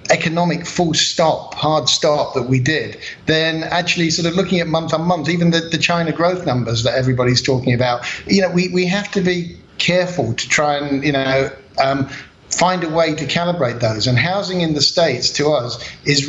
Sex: male